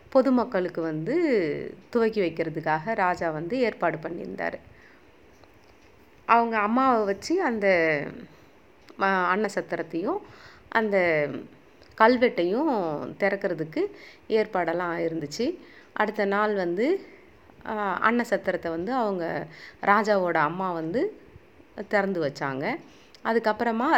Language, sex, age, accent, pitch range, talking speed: Tamil, female, 30-49, native, 175-245 Hz, 75 wpm